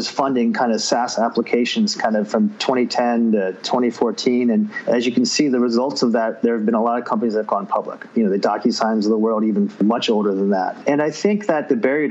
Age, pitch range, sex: 30-49, 120-145 Hz, male